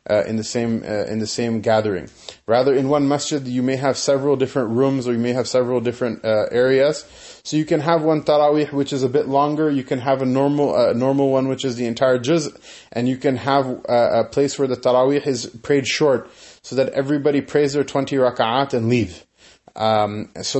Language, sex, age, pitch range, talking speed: English, male, 20-39, 115-140 Hz, 220 wpm